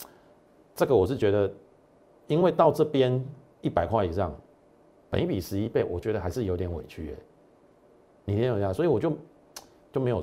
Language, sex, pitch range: Chinese, male, 95-135 Hz